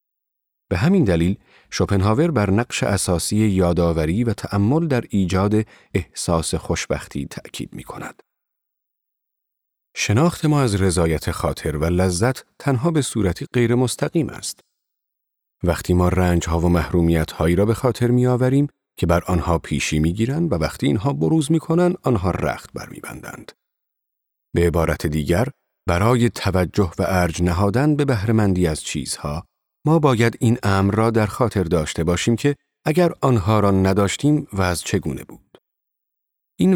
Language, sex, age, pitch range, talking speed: Persian, male, 40-59, 85-120 Hz, 135 wpm